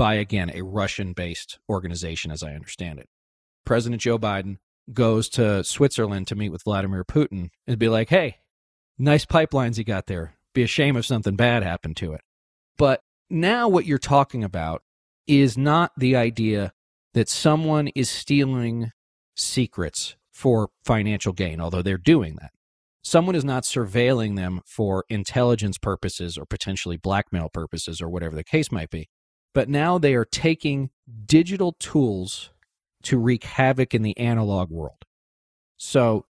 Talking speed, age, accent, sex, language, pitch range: 155 wpm, 40-59, American, male, English, 95-135 Hz